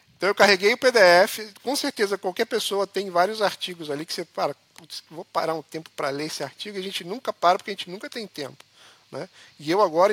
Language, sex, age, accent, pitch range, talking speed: Portuguese, male, 50-69, Brazilian, 170-240 Hz, 225 wpm